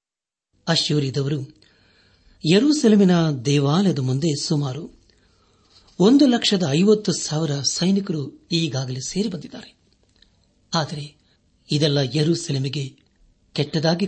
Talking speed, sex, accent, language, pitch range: 65 wpm, male, native, Kannada, 100-170 Hz